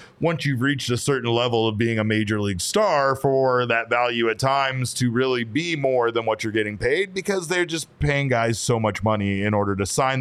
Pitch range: 110-130 Hz